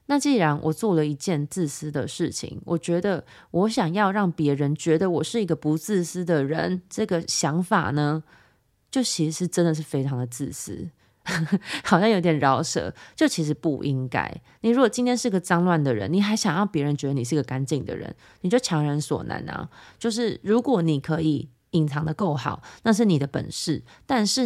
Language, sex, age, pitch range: Chinese, female, 20-39, 150-190 Hz